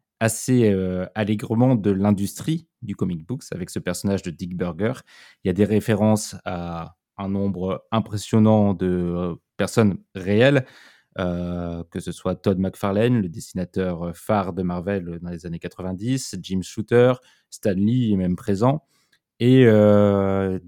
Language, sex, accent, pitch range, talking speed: French, male, French, 95-115 Hz, 150 wpm